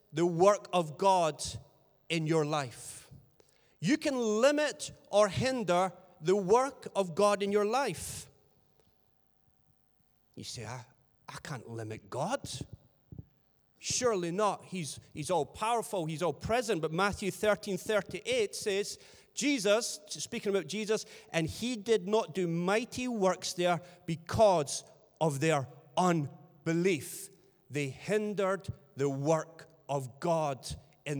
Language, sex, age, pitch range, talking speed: English, male, 40-59, 155-210 Hz, 125 wpm